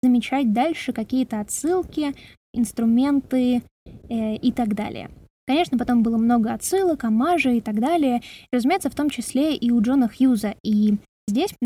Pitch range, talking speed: 225-265 Hz, 145 wpm